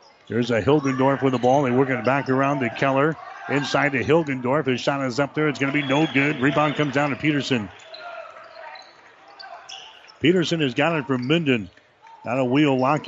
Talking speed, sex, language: 195 wpm, male, English